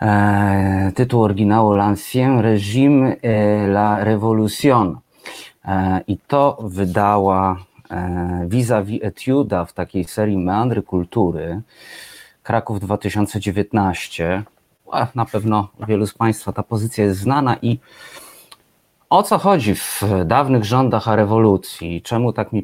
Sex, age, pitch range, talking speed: male, 30-49, 95-115 Hz, 110 wpm